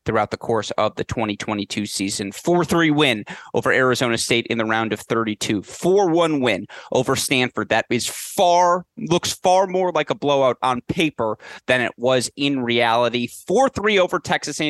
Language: English